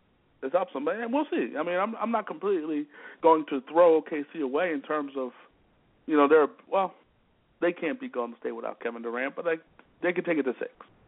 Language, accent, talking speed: English, American, 225 wpm